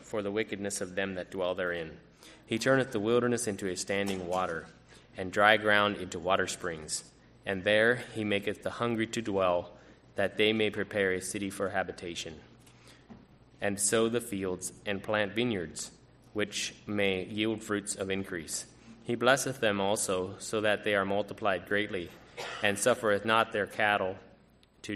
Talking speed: 160 wpm